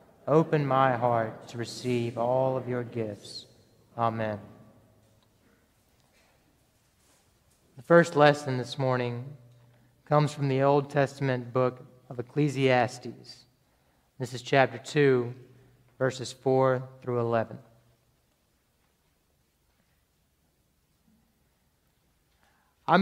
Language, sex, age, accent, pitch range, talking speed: English, male, 30-49, American, 120-145 Hz, 85 wpm